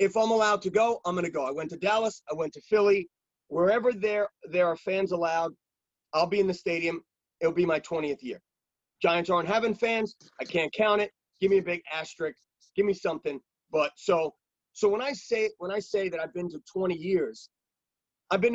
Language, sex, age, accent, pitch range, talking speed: English, male, 30-49, American, 175-215 Hz, 210 wpm